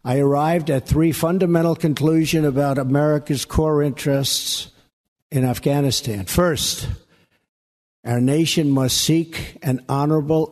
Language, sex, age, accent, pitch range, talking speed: English, male, 60-79, American, 120-155 Hz, 110 wpm